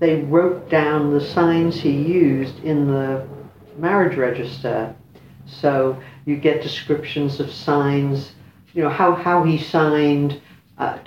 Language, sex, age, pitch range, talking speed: English, female, 60-79, 130-155 Hz, 130 wpm